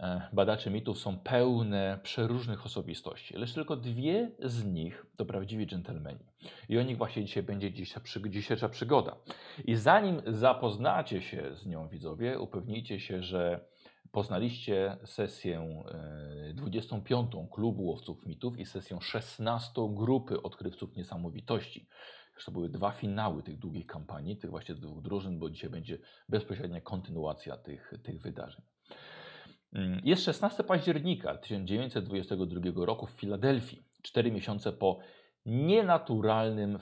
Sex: male